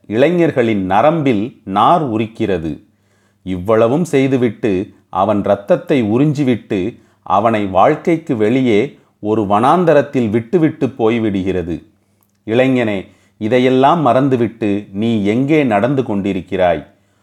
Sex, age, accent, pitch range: male, 40-59, native, 100-140 Hz